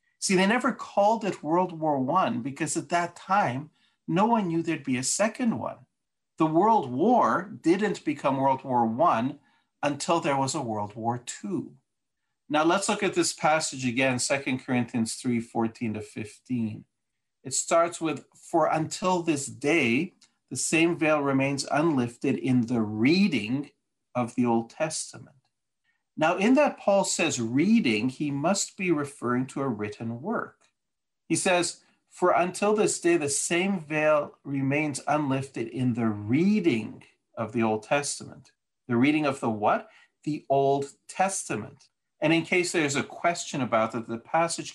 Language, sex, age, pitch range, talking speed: English, male, 50-69, 120-170 Hz, 155 wpm